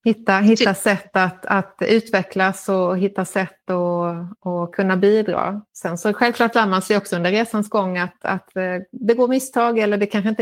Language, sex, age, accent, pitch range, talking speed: Swedish, female, 30-49, native, 170-210 Hz, 180 wpm